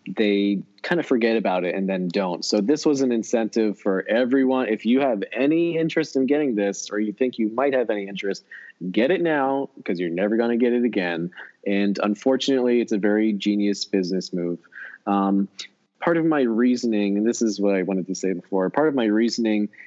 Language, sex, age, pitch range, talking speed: English, male, 20-39, 100-130 Hz, 210 wpm